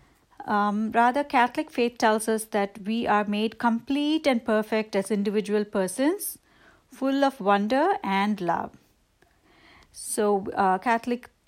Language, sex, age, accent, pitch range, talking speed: English, female, 60-79, Indian, 205-255 Hz, 125 wpm